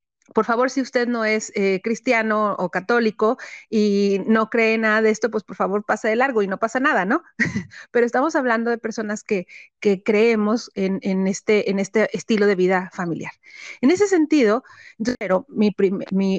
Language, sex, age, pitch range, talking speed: Spanish, female, 30-49, 195-245 Hz, 185 wpm